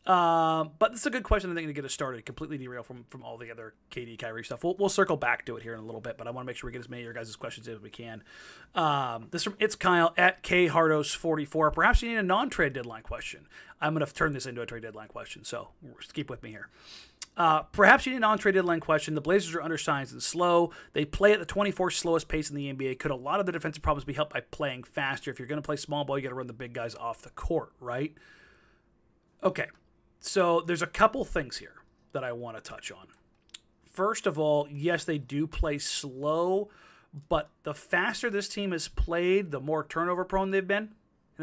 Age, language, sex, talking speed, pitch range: 30-49, English, male, 250 wpm, 135-180 Hz